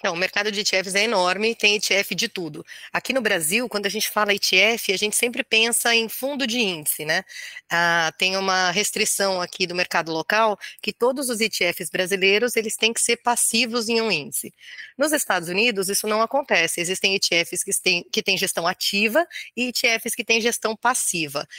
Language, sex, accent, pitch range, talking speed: Portuguese, female, Brazilian, 185-225 Hz, 185 wpm